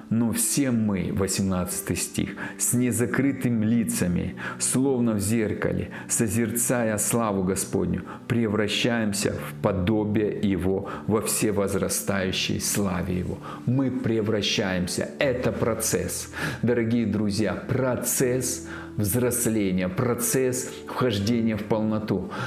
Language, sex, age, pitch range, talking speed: Russian, male, 40-59, 105-125 Hz, 90 wpm